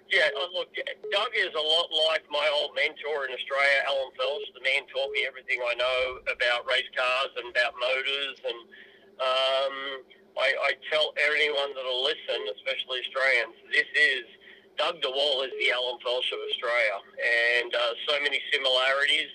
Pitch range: 140-215 Hz